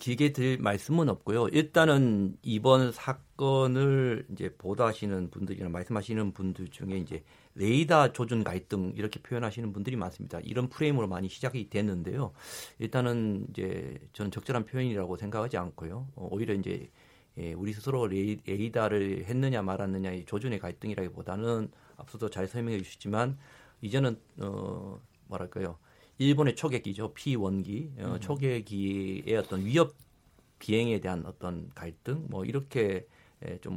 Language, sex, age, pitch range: Korean, male, 40-59, 95-130 Hz